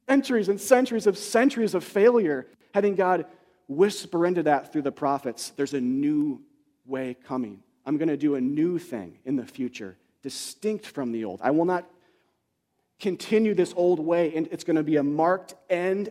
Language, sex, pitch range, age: English, male, 130-190 Hz, 30-49